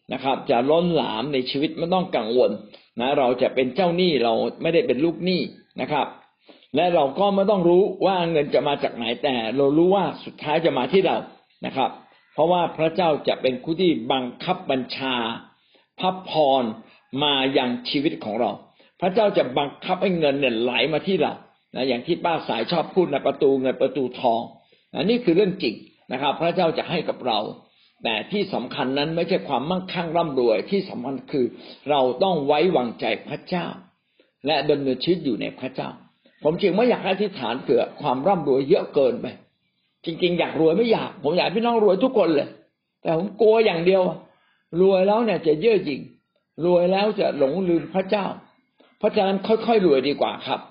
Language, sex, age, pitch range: Thai, male, 60-79, 135-190 Hz